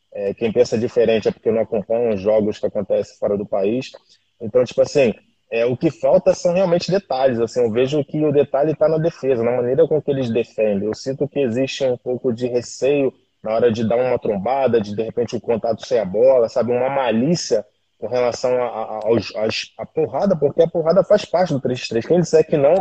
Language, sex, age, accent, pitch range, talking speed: Portuguese, male, 20-39, Brazilian, 120-155 Hz, 225 wpm